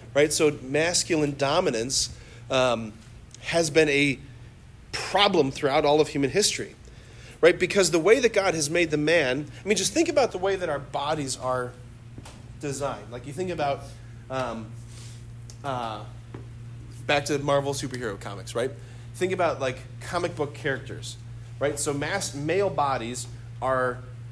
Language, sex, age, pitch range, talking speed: English, male, 40-59, 120-150 Hz, 145 wpm